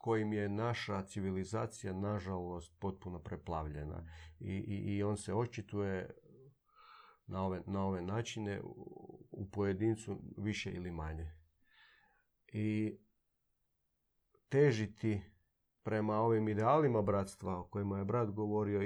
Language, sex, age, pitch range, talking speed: Croatian, male, 40-59, 100-120 Hz, 110 wpm